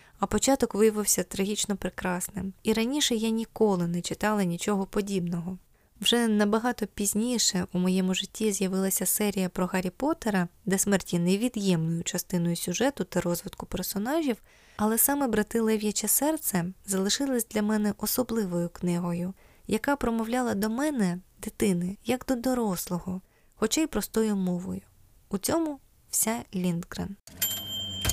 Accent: native